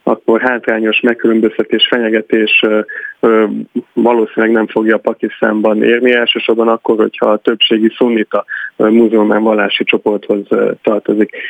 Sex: male